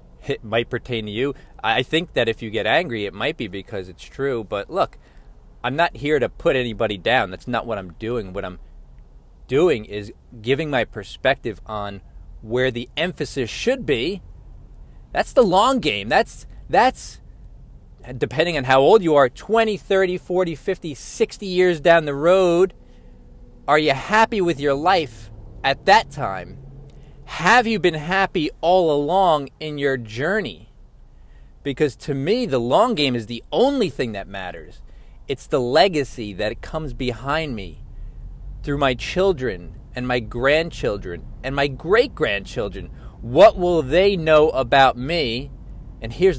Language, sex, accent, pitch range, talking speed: English, male, American, 115-165 Hz, 155 wpm